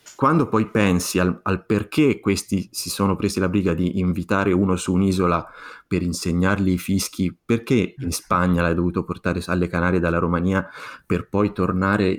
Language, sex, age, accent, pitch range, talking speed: Italian, male, 30-49, native, 85-105 Hz, 165 wpm